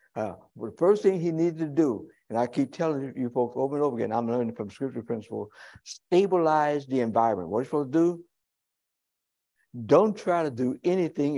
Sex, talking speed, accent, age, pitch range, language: male, 200 wpm, American, 60-79, 115-155 Hz, English